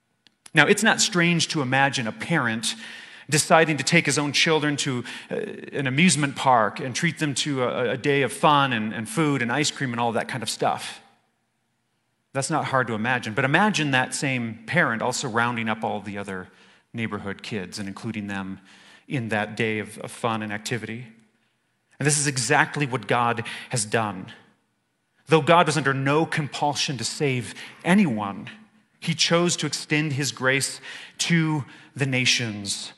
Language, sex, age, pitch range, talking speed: English, male, 30-49, 115-155 Hz, 165 wpm